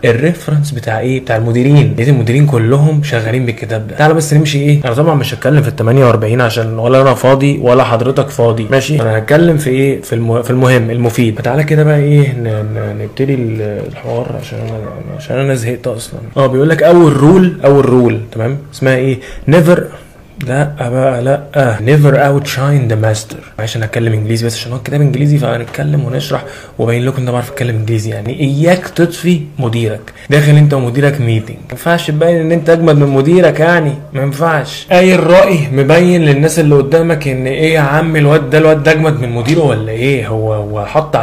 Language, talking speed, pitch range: Arabic, 190 wpm, 115-150 Hz